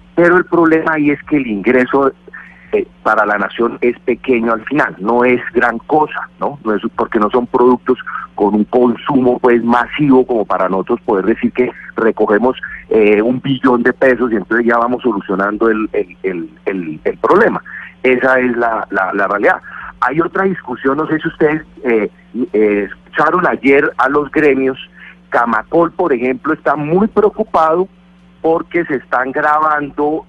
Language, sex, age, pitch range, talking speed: Spanish, male, 40-59, 120-170 Hz, 170 wpm